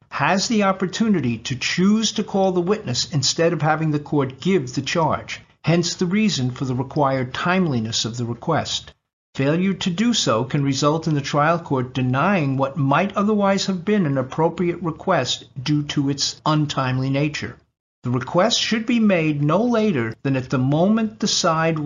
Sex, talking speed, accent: male, 175 wpm, American